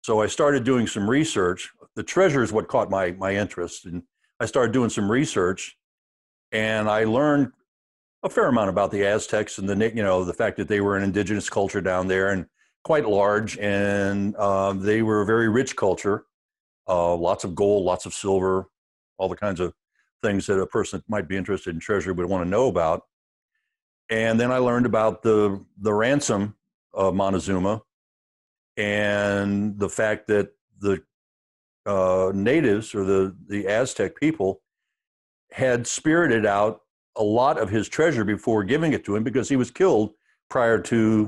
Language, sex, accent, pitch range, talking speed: English, male, American, 95-115 Hz, 175 wpm